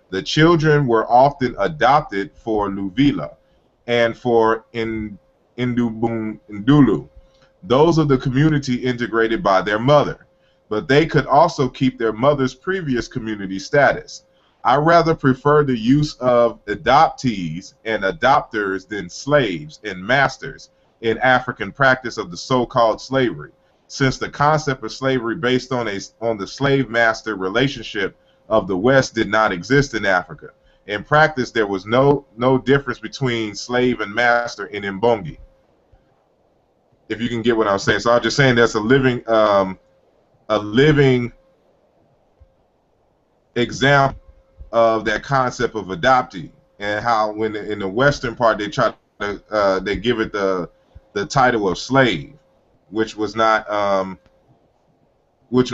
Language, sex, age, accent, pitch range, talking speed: English, male, 30-49, American, 110-135 Hz, 140 wpm